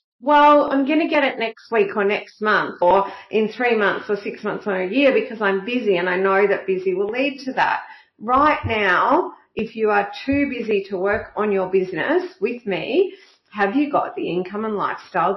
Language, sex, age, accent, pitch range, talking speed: English, female, 40-59, Australian, 195-270 Hz, 210 wpm